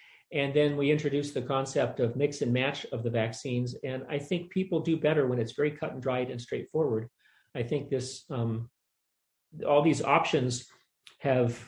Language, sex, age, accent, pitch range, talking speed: English, male, 40-59, American, 120-150 Hz, 180 wpm